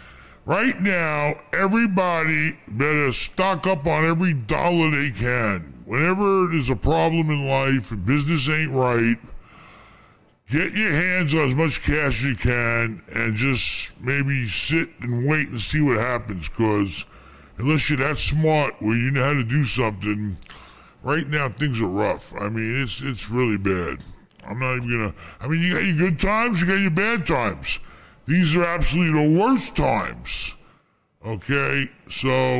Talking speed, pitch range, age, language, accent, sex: 165 wpm, 115-160 Hz, 60-79, English, American, female